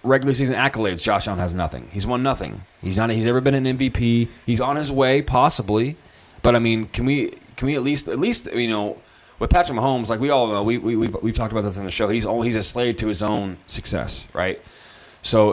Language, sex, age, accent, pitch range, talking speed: English, male, 20-39, American, 100-120 Hz, 245 wpm